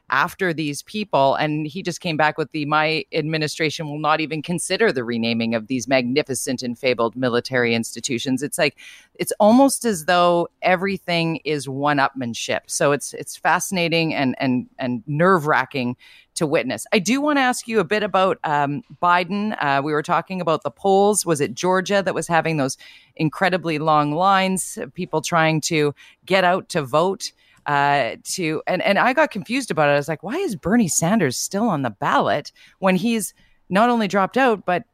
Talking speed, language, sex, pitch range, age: 185 wpm, English, female, 140-190 Hz, 30-49